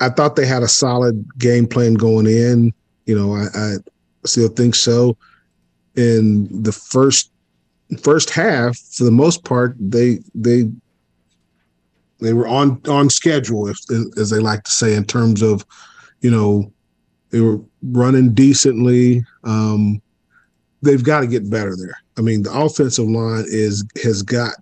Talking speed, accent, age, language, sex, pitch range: 150 wpm, American, 40-59, English, male, 100-120 Hz